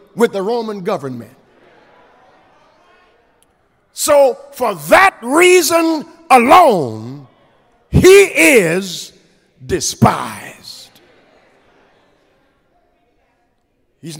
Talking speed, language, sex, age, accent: 55 wpm, English, male, 50-69, American